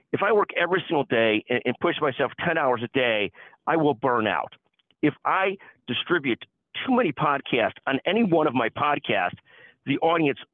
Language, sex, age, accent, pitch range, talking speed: English, male, 50-69, American, 120-170 Hz, 175 wpm